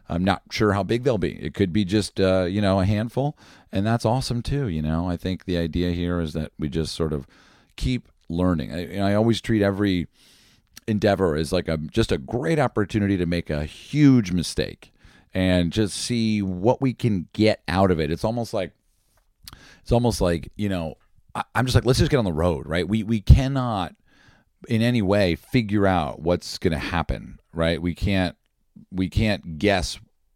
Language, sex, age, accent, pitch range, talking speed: English, male, 40-59, American, 85-110 Hz, 200 wpm